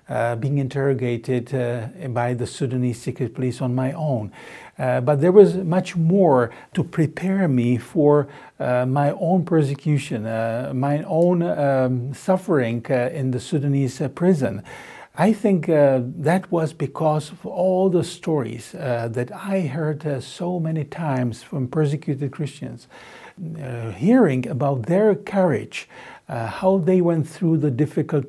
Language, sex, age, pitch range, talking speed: English, male, 60-79, 130-170 Hz, 150 wpm